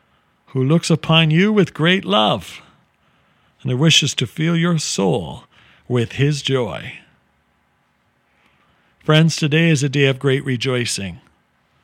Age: 50-69